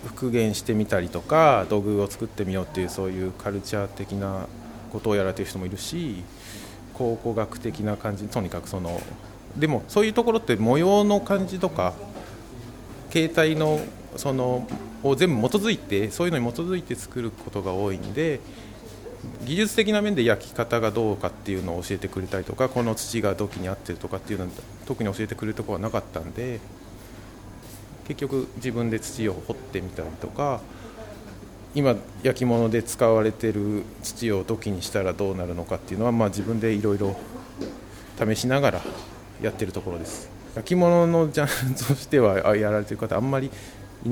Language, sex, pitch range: Japanese, male, 100-125 Hz